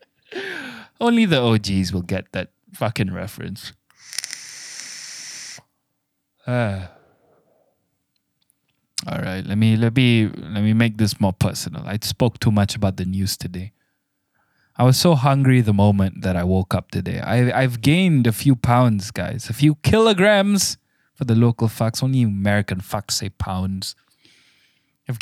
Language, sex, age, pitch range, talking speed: English, male, 20-39, 100-130 Hz, 140 wpm